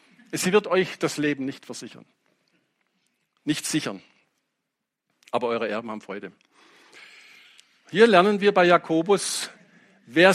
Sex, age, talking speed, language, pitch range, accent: male, 50-69, 115 wpm, English, 160-225 Hz, German